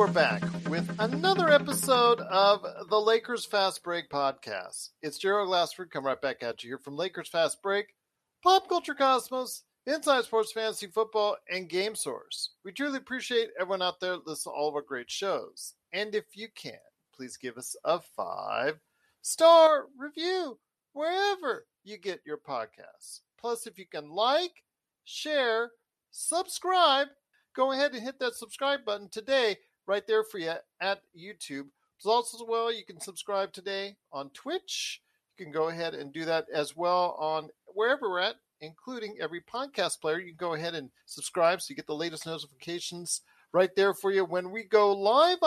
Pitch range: 170-255 Hz